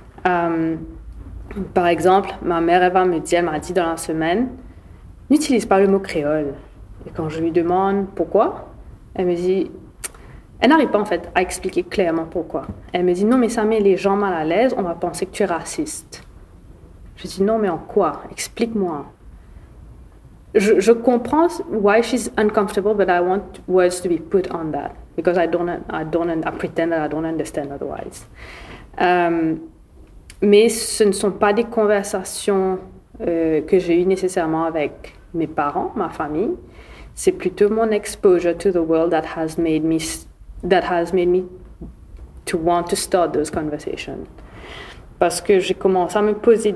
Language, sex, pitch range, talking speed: French, female, 165-210 Hz, 170 wpm